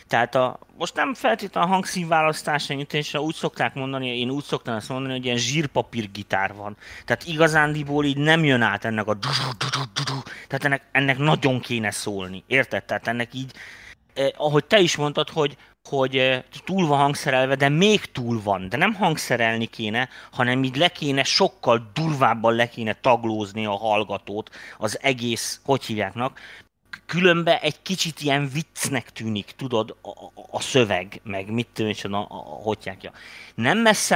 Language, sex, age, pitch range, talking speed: Hungarian, male, 30-49, 115-145 Hz, 160 wpm